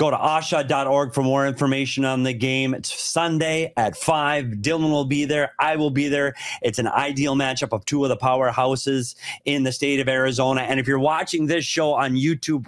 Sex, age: male, 30-49